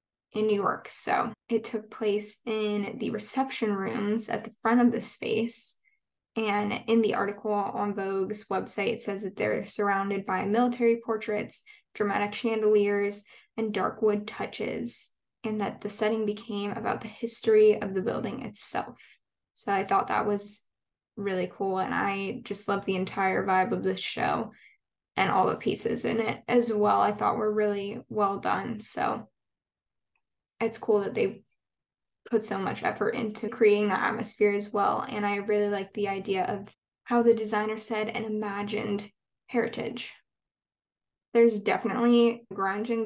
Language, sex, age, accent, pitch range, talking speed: English, female, 10-29, American, 200-225 Hz, 160 wpm